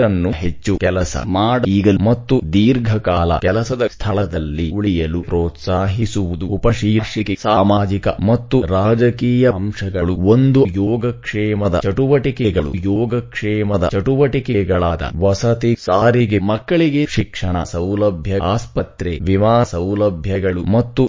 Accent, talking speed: Indian, 100 wpm